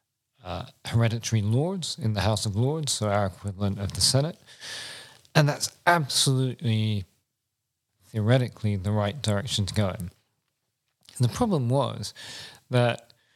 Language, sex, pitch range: English, male, 105-125 Hz